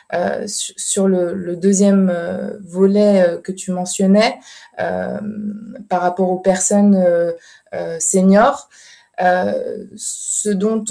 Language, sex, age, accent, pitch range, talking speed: English, female, 20-39, French, 185-210 Hz, 110 wpm